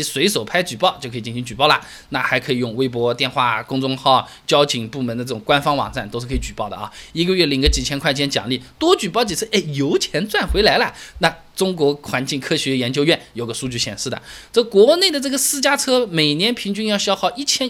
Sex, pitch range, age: male, 135-220 Hz, 20-39